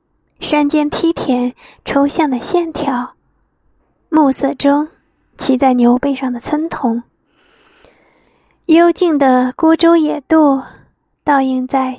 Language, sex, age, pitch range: Chinese, female, 20-39, 255-310 Hz